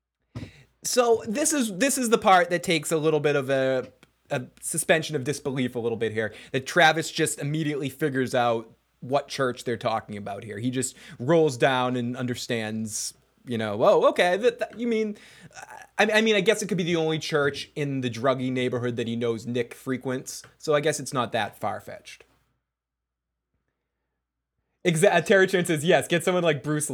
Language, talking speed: English, 190 wpm